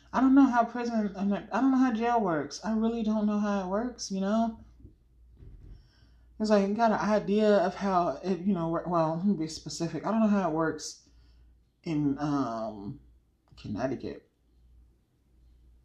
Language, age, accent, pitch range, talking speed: English, 30-49, American, 135-210 Hz, 165 wpm